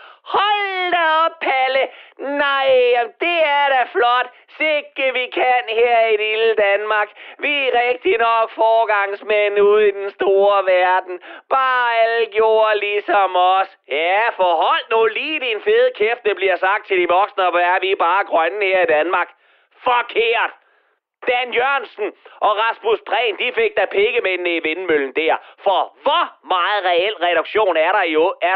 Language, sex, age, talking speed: Danish, male, 30-49, 160 wpm